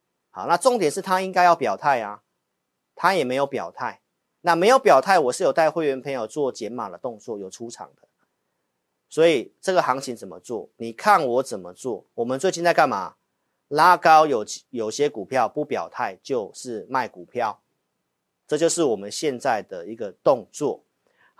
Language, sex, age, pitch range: Chinese, male, 40-59, 120-185 Hz